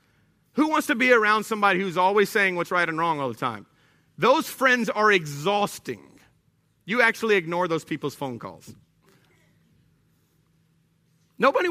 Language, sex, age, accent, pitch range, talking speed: English, male, 30-49, American, 145-190 Hz, 145 wpm